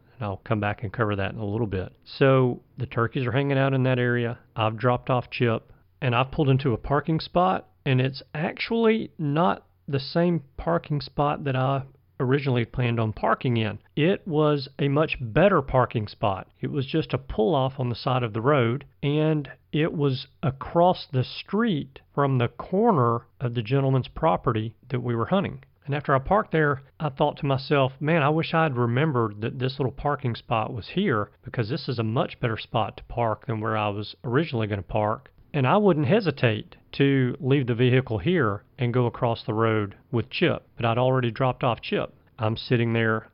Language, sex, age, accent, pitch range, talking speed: English, male, 40-59, American, 115-140 Hz, 200 wpm